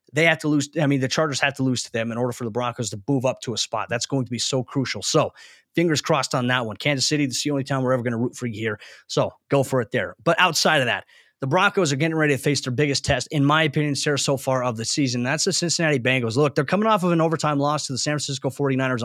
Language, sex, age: English, male, 20-39